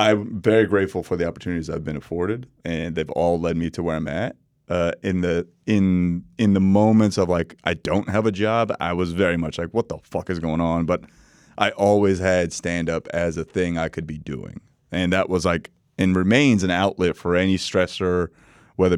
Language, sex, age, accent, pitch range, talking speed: English, male, 30-49, American, 85-100 Hz, 210 wpm